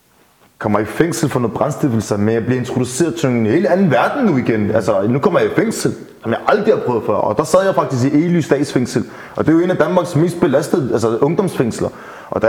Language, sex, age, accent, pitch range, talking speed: Danish, male, 30-49, native, 130-175 Hz, 245 wpm